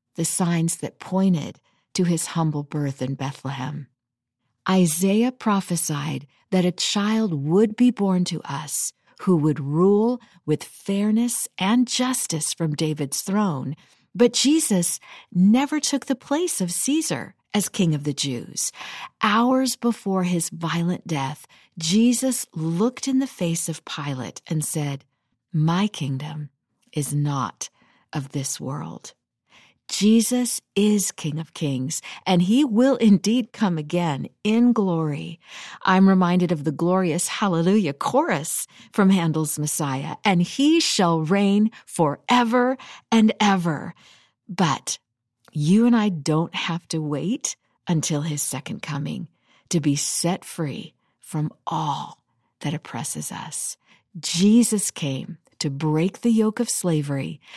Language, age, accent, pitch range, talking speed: English, 50-69, American, 150-210 Hz, 130 wpm